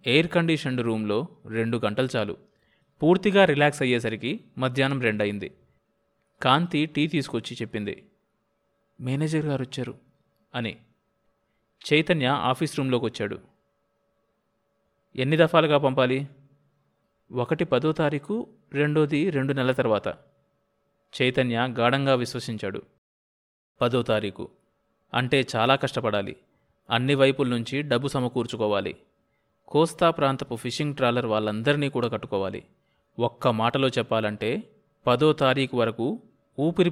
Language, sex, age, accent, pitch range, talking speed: Telugu, male, 20-39, native, 120-150 Hz, 95 wpm